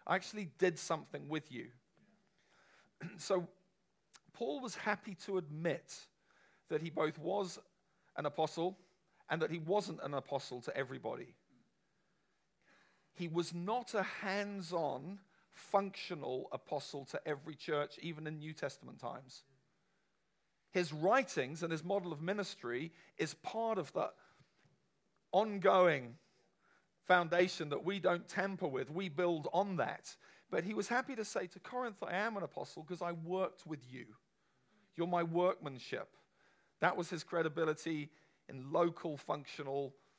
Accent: British